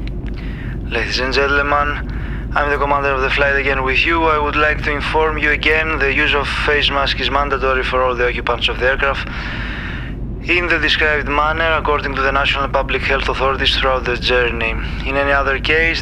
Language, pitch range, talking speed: Greek, 130-150 Hz, 190 wpm